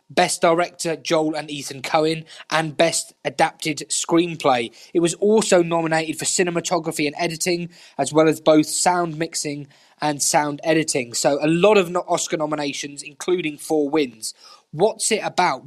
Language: English